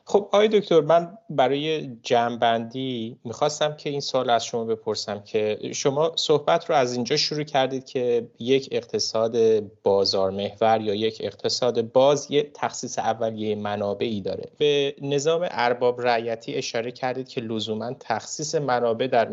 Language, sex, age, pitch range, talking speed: Persian, male, 30-49, 110-140 Hz, 140 wpm